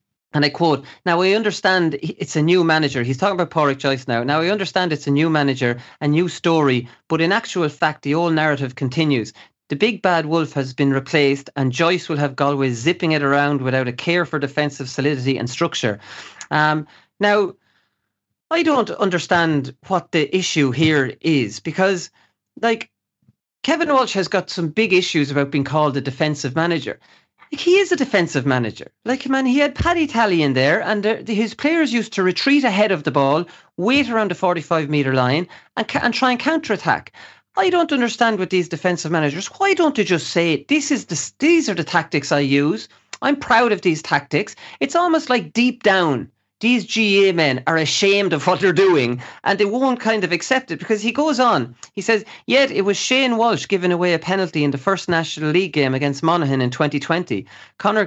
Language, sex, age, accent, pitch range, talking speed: English, male, 40-59, Irish, 145-210 Hz, 195 wpm